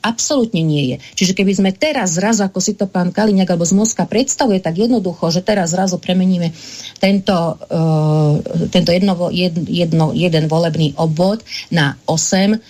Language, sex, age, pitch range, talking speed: Slovak, female, 40-59, 160-200 Hz, 155 wpm